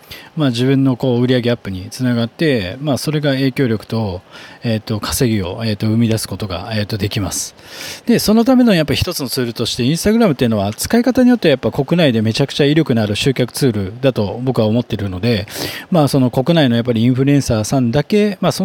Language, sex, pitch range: Japanese, male, 110-145 Hz